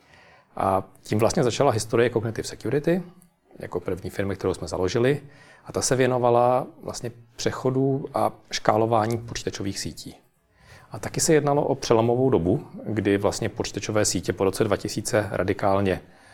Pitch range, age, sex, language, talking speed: 100-120 Hz, 40-59, male, Czech, 140 wpm